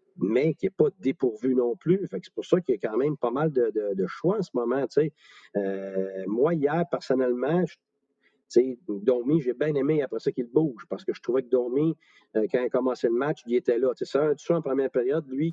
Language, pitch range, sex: French, 120-185 Hz, male